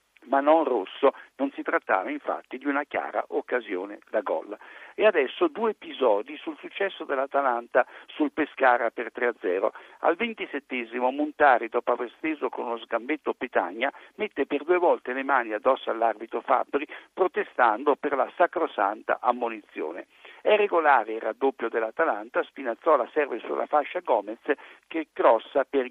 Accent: native